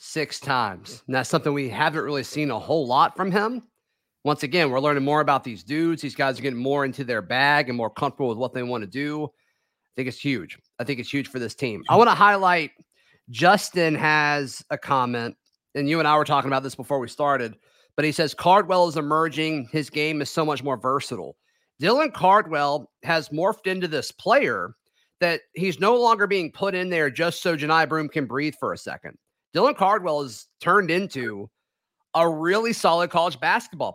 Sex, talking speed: male, 205 wpm